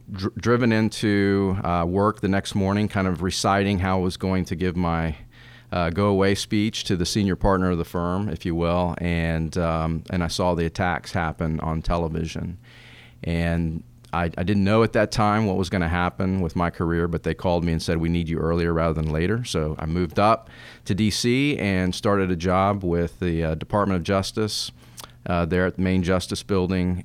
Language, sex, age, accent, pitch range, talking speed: English, male, 40-59, American, 85-105 Hz, 205 wpm